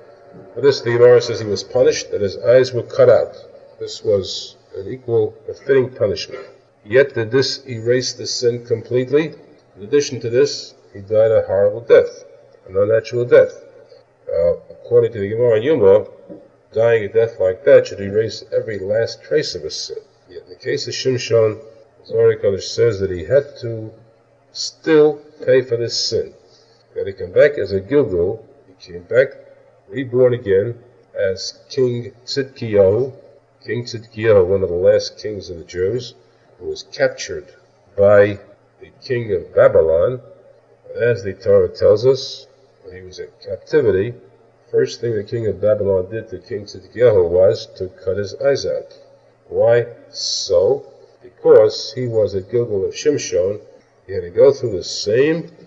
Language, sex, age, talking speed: English, male, 50-69, 165 wpm